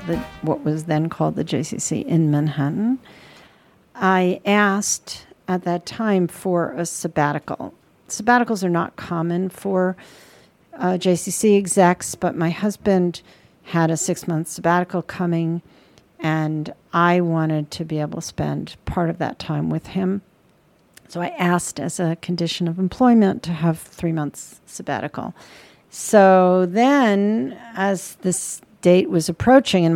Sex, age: female, 50-69